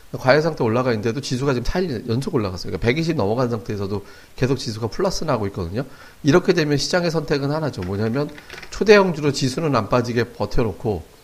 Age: 40-59